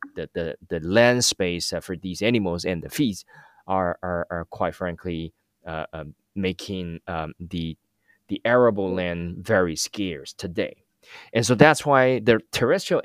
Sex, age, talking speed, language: male, 20-39, 150 wpm, English